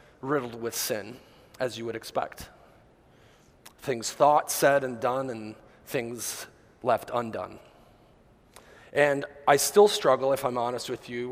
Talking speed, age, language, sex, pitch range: 135 wpm, 30-49, English, male, 120-150 Hz